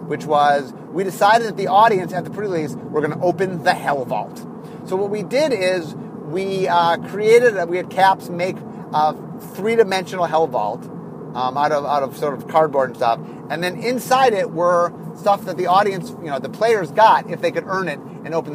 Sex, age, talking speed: male, 30-49, 210 wpm